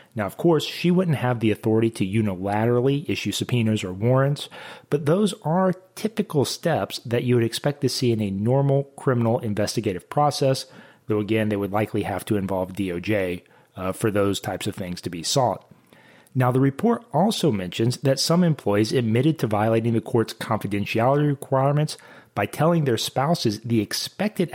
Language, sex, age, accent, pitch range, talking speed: English, male, 30-49, American, 110-150 Hz, 170 wpm